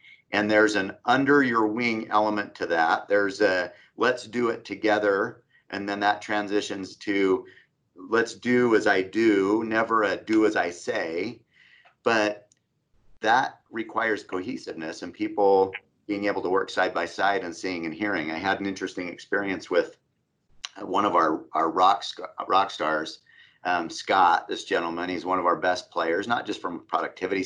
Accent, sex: American, male